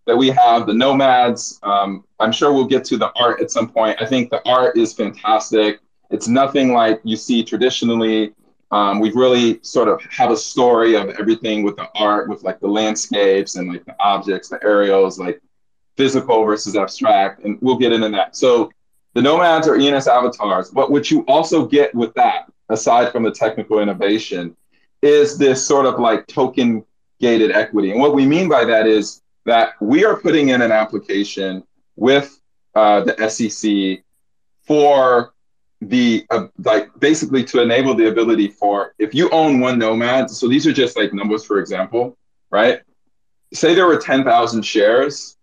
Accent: American